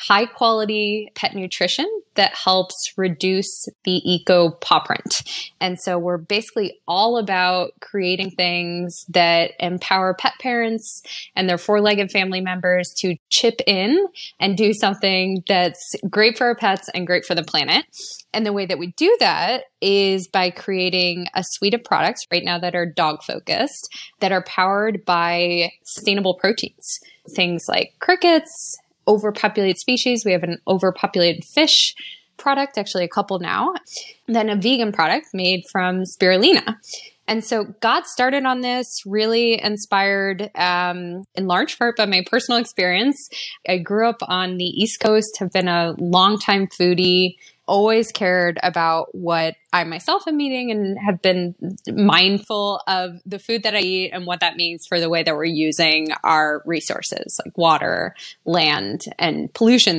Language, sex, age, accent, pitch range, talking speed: English, female, 20-39, American, 180-220 Hz, 155 wpm